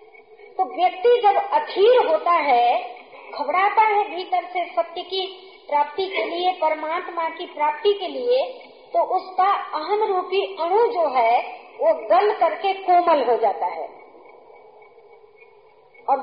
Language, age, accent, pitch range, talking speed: Hindi, 50-69, native, 315-435 Hz, 130 wpm